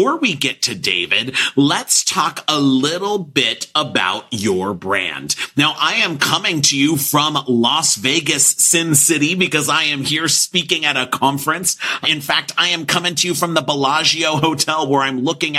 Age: 40-59